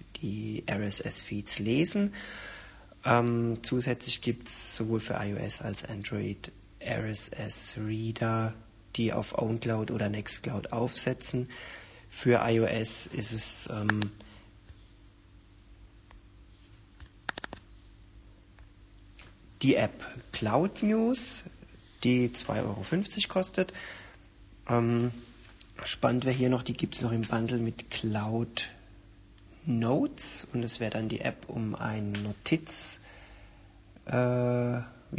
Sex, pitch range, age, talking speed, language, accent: male, 105-120 Hz, 40-59, 95 wpm, German, German